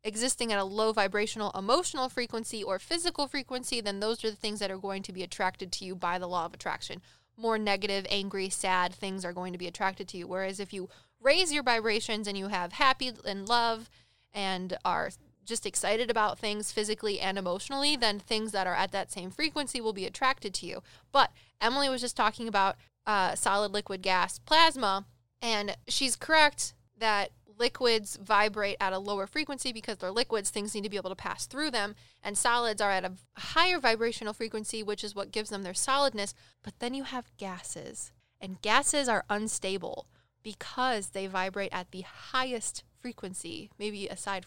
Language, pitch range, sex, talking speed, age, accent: English, 195-240 Hz, female, 190 wpm, 10-29, American